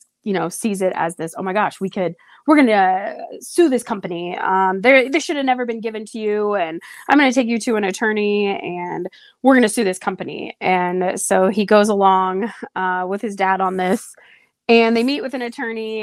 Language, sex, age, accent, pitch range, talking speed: English, female, 20-39, American, 185-235 Hz, 215 wpm